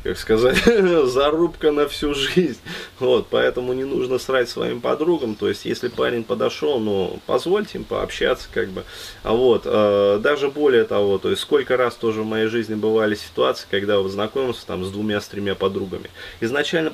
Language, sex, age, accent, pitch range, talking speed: Russian, male, 20-39, native, 100-160 Hz, 175 wpm